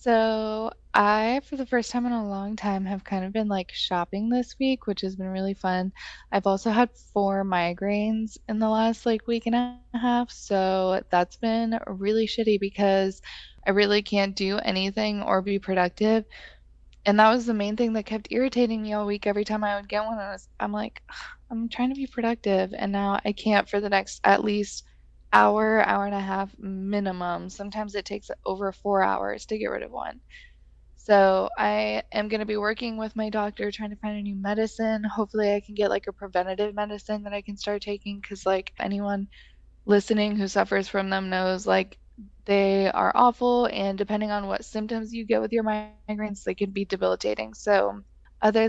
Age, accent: 20-39, American